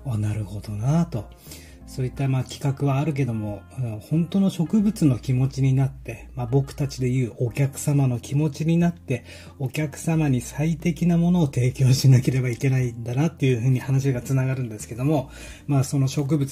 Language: Japanese